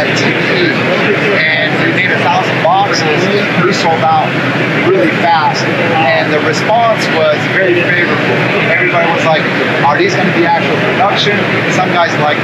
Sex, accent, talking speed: male, American, 145 wpm